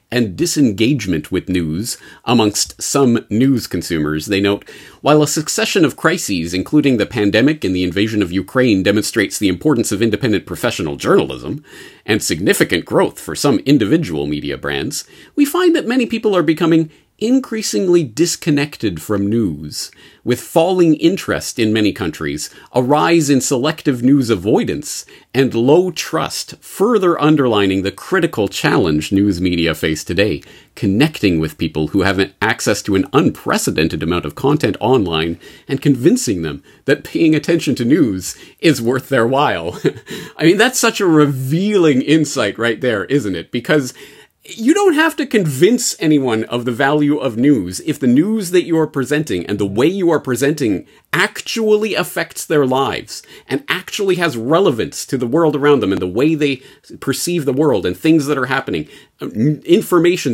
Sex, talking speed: male, 160 wpm